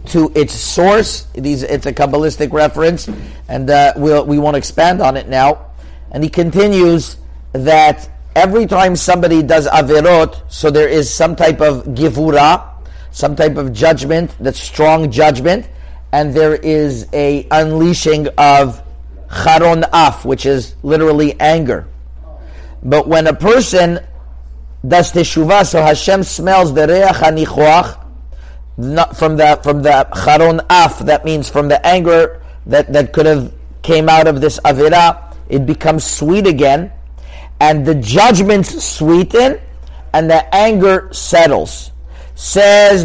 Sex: male